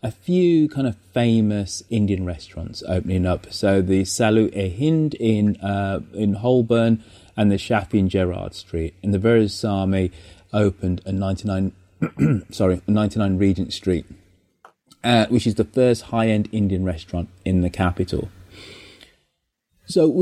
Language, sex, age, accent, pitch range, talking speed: English, male, 30-49, British, 90-110 Hz, 145 wpm